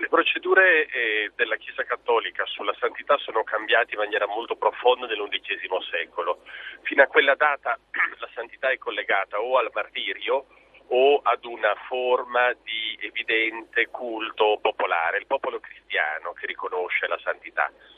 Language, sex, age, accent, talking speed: Italian, male, 40-59, native, 140 wpm